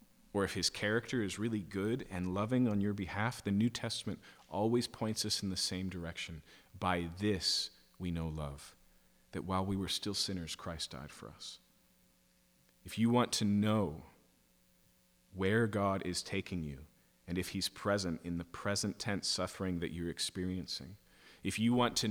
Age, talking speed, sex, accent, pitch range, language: 40-59, 170 wpm, male, American, 90-120 Hz, English